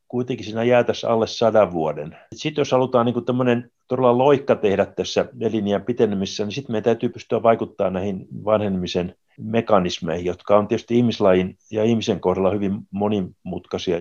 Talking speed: 150 wpm